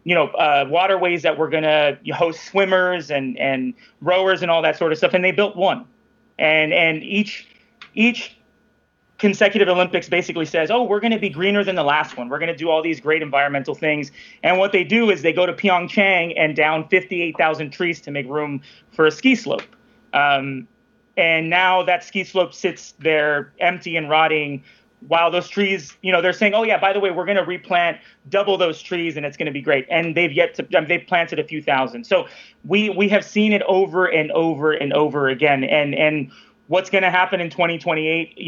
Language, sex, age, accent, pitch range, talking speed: English, male, 30-49, American, 155-195 Hz, 215 wpm